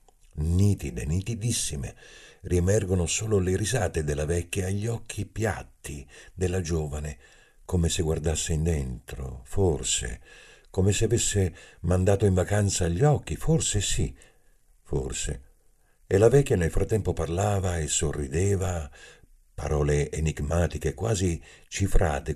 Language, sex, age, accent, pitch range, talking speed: Italian, male, 50-69, native, 75-105 Hz, 110 wpm